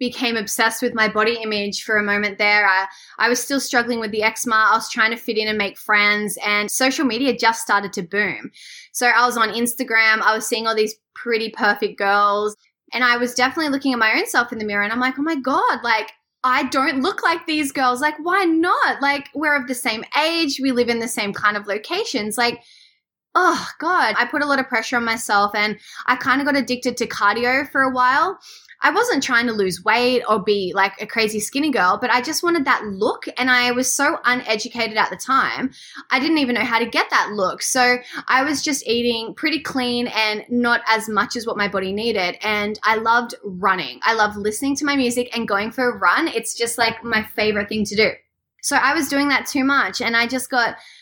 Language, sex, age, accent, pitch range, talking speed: English, female, 10-29, Australian, 215-260 Hz, 230 wpm